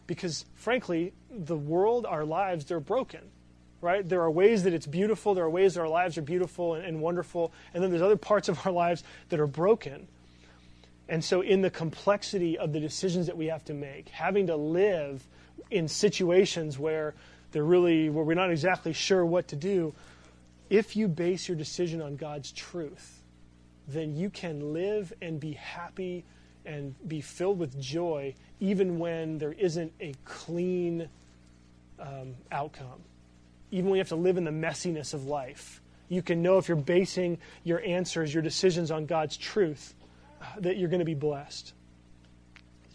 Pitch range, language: 145-180 Hz, English